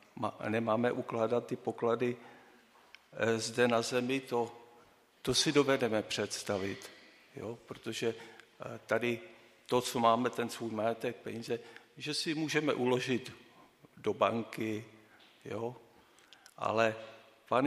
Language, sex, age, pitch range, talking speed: Czech, male, 50-69, 115-140 Hz, 105 wpm